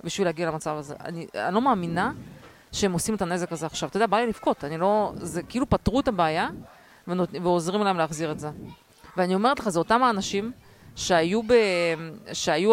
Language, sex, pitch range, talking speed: Hebrew, female, 165-200 Hz, 195 wpm